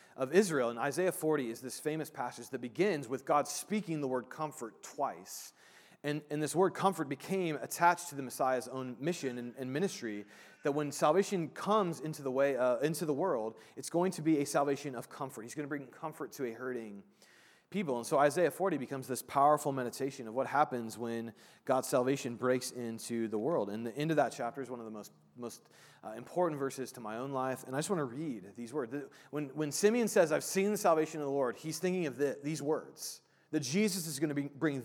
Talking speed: 220 wpm